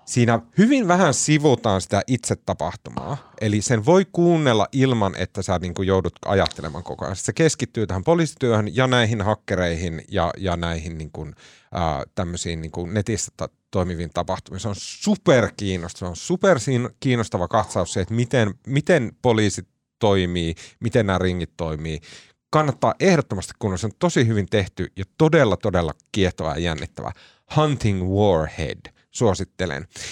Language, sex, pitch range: Finnish, male, 95-140 Hz